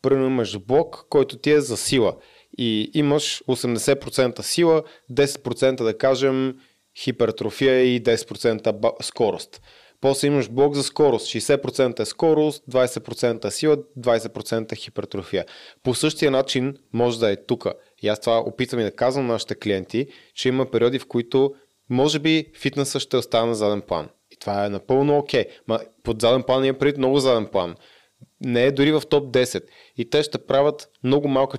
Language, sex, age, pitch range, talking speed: Bulgarian, male, 20-39, 115-140 Hz, 160 wpm